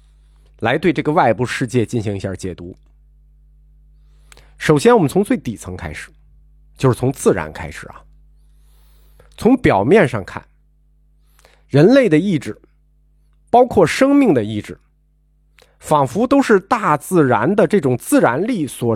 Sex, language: male, Chinese